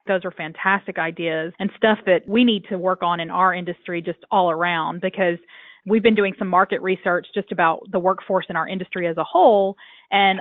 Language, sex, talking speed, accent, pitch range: English, female, 210 wpm, American, 175-215 Hz